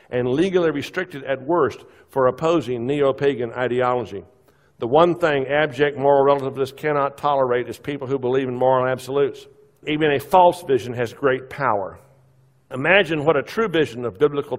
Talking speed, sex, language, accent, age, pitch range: 155 wpm, male, English, American, 60-79, 130-170 Hz